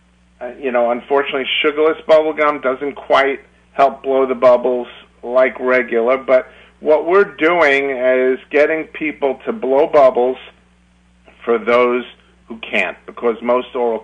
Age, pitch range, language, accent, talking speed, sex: 50-69, 100-125 Hz, English, American, 135 wpm, male